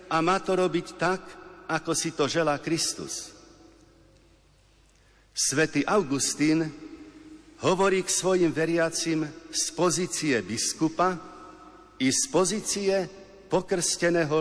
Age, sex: 60-79, male